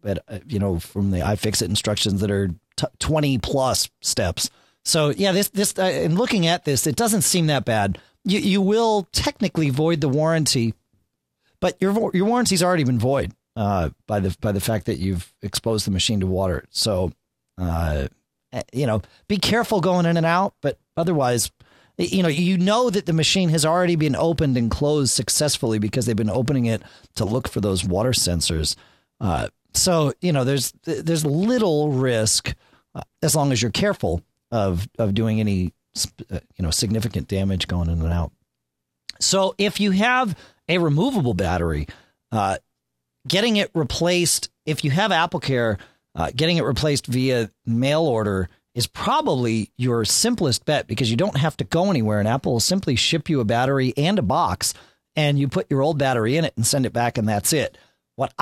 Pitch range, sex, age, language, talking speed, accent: 105-165 Hz, male, 40-59, English, 190 wpm, American